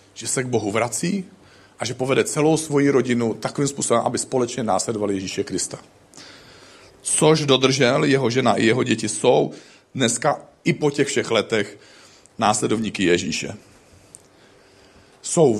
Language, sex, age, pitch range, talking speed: Czech, male, 40-59, 120-165 Hz, 135 wpm